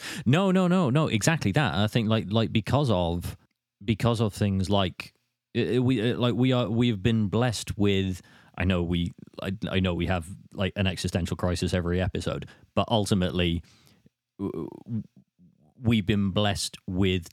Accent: British